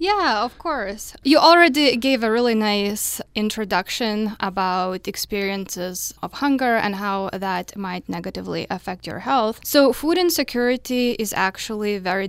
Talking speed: 135 wpm